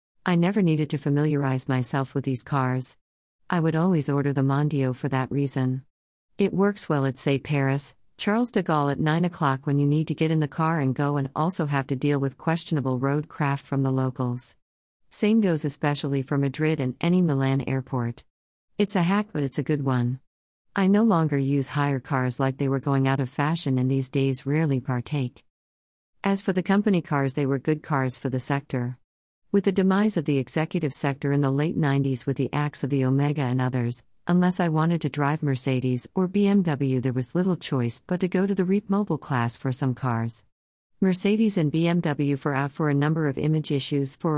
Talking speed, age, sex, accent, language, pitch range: 205 wpm, 50-69, female, American, English, 130-160 Hz